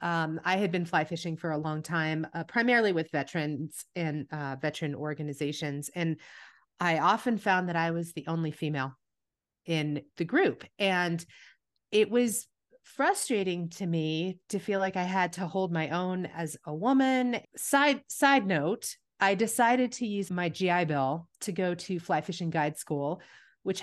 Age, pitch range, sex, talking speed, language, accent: 30-49, 155-195 Hz, female, 170 wpm, English, American